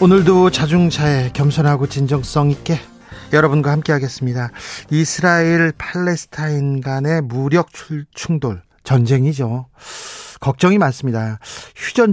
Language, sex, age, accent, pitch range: Korean, male, 40-59, native, 135-180 Hz